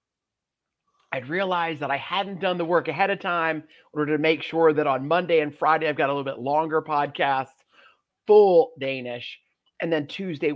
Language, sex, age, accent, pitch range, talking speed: English, male, 40-59, American, 145-190 Hz, 190 wpm